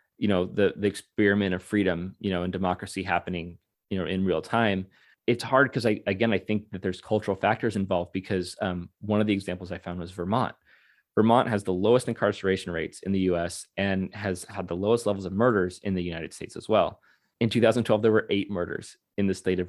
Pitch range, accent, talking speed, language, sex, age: 95-110 Hz, American, 220 wpm, English, male, 30-49